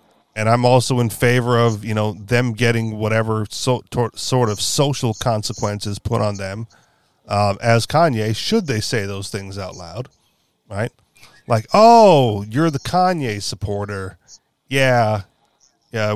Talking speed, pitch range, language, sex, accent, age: 135 wpm, 105-130 Hz, English, male, American, 40-59